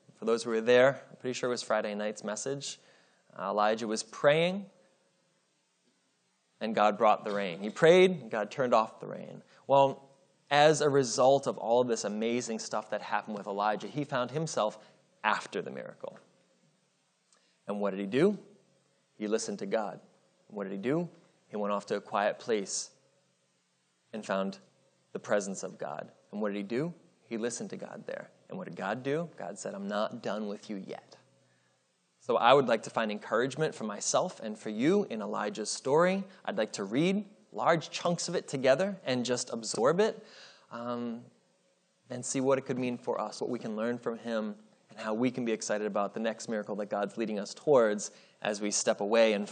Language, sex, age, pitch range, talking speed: English, male, 20-39, 105-145 Hz, 200 wpm